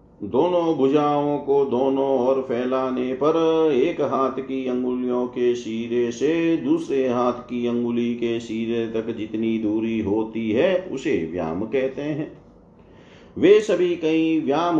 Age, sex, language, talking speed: 40-59, male, Hindi, 135 wpm